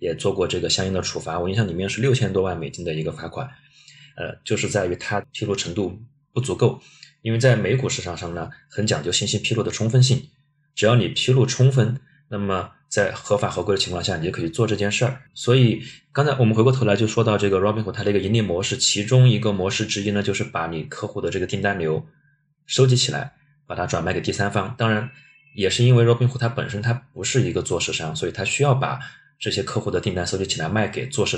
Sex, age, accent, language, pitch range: male, 20-39, native, Chinese, 100-135 Hz